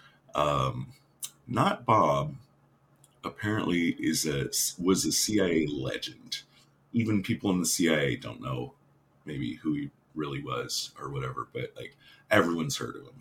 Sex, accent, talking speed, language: male, American, 135 wpm, English